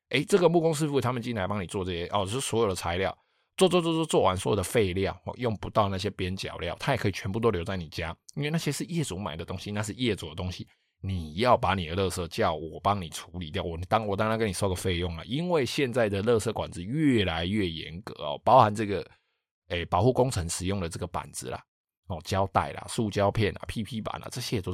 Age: 20-39